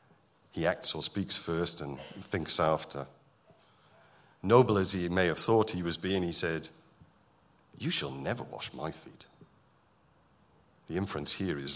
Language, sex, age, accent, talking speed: English, male, 50-69, British, 150 wpm